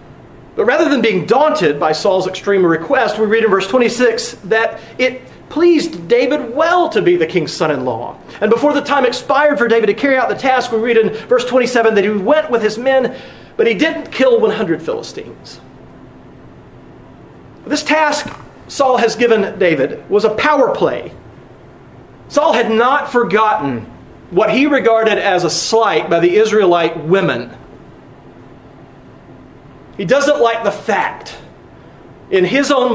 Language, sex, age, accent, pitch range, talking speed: English, male, 40-59, American, 205-285 Hz, 155 wpm